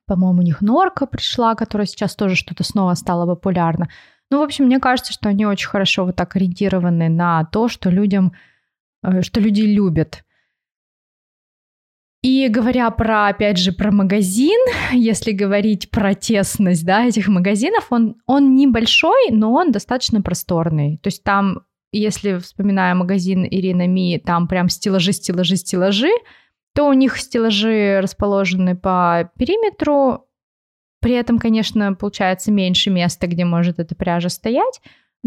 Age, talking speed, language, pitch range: 20-39, 140 wpm, Russian, 185-235 Hz